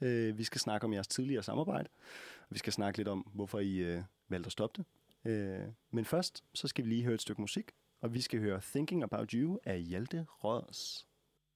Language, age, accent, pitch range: Danish, 30-49, native, 110-155 Hz